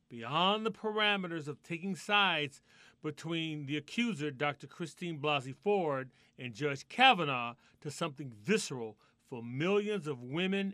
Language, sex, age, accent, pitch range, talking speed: English, male, 40-59, American, 135-180 Hz, 130 wpm